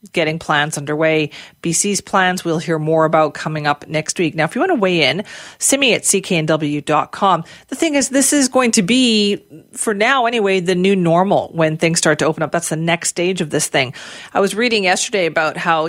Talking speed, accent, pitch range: 215 wpm, American, 165-200 Hz